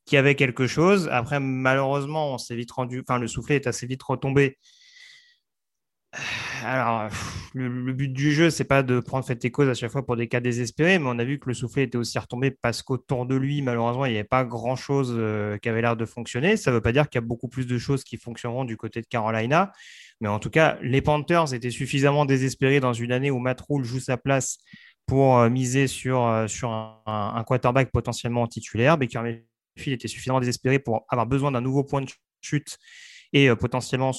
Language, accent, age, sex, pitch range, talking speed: French, French, 30-49, male, 115-140 Hz, 230 wpm